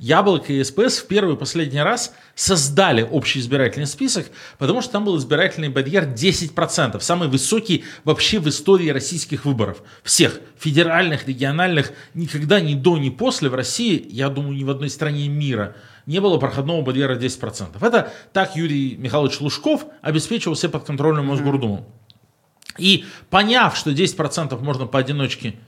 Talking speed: 145 wpm